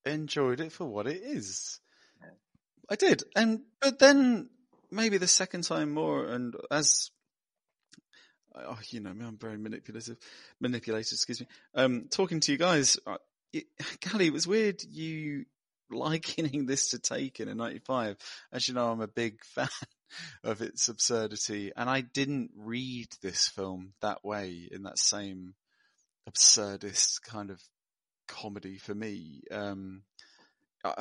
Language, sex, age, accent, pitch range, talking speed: English, male, 30-49, British, 105-145 Hz, 140 wpm